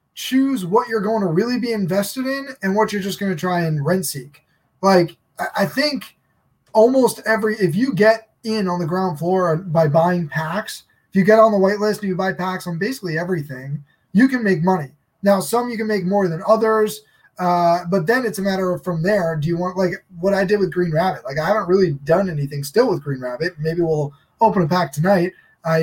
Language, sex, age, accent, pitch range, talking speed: English, male, 20-39, American, 160-205 Hz, 225 wpm